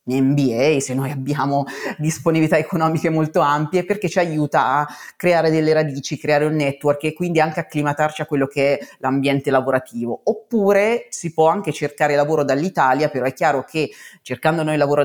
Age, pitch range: 30-49, 135-155 Hz